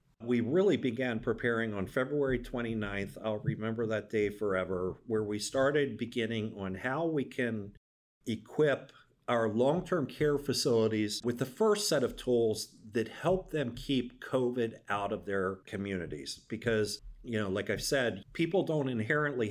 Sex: male